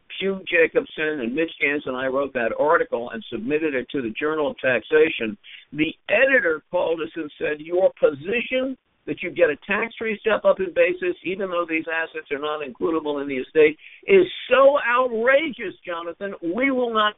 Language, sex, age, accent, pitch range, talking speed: English, male, 60-79, American, 155-245 Hz, 180 wpm